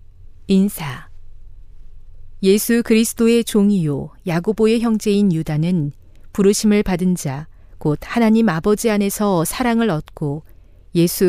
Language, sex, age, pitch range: Korean, female, 40-59, 145-210 Hz